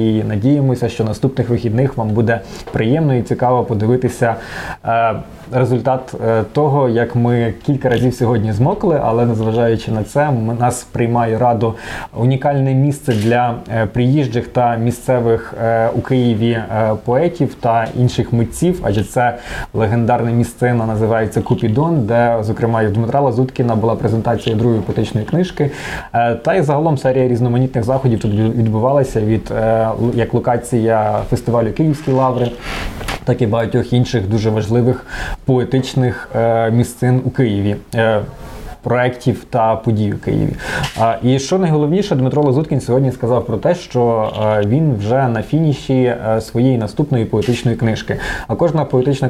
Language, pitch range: Ukrainian, 115-130 Hz